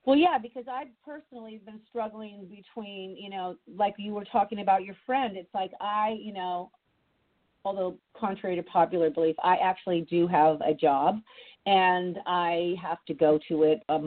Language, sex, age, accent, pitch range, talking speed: English, female, 40-59, American, 155-195 Hz, 175 wpm